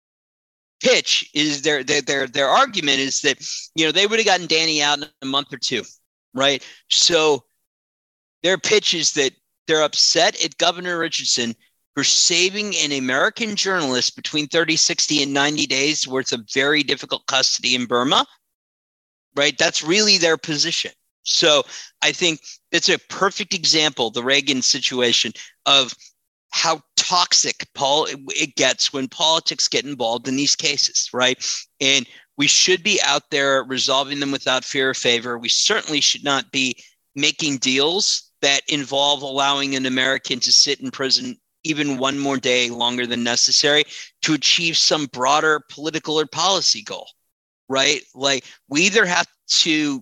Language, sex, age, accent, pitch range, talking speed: English, male, 50-69, American, 130-160 Hz, 155 wpm